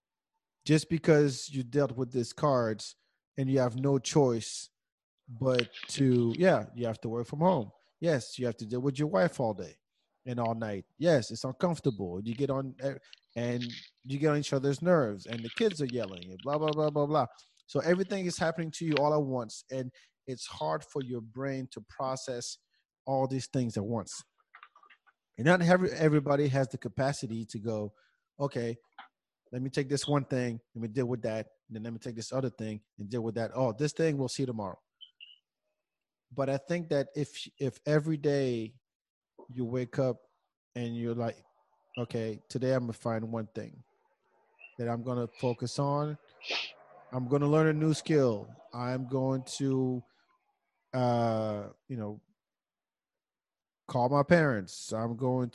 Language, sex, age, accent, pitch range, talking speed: English, male, 30-49, American, 115-145 Hz, 175 wpm